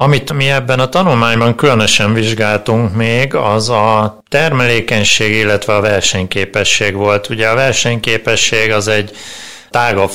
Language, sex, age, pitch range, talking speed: Hungarian, male, 30-49, 100-115 Hz, 125 wpm